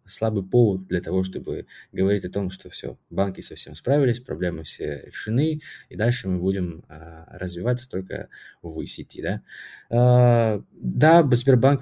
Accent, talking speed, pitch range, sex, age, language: native, 145 wpm, 95-115 Hz, male, 20-39, Russian